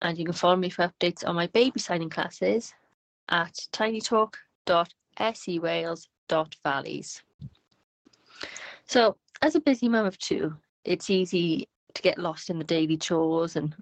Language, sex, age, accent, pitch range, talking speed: English, female, 30-49, British, 160-185 Hz, 135 wpm